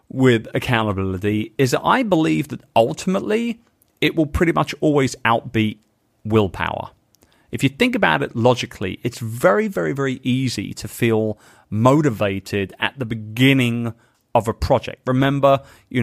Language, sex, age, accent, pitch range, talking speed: English, male, 30-49, British, 110-145 Hz, 140 wpm